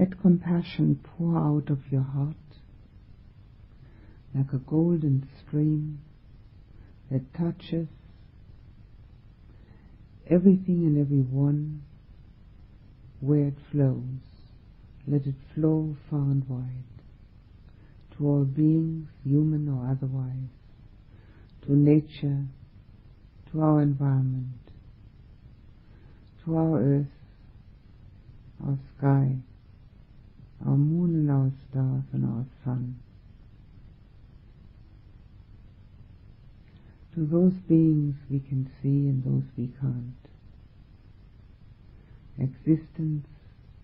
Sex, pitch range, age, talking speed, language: female, 105-145 Hz, 60-79, 80 wpm, English